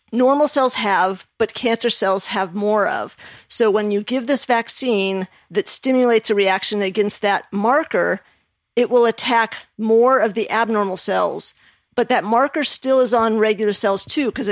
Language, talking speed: English, 165 wpm